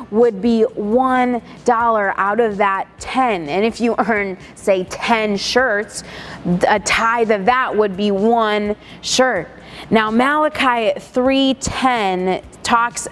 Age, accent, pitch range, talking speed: 20-39, American, 225-280 Hz, 120 wpm